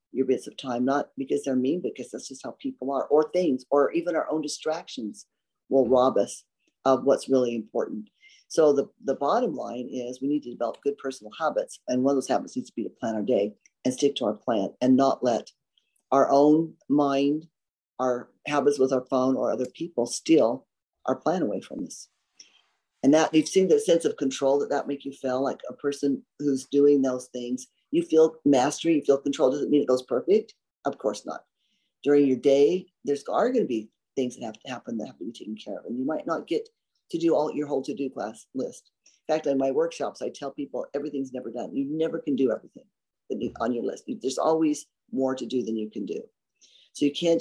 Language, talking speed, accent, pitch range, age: English, 225 wpm, American, 130-150 Hz, 50-69